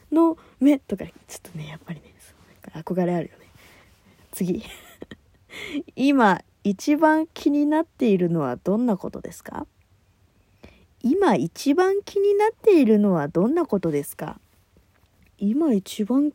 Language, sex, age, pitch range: Japanese, female, 20-39, 170-275 Hz